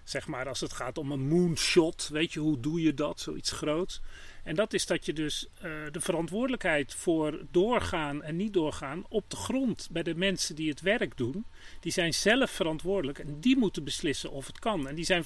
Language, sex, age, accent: Dutch, male, 40-59, Dutch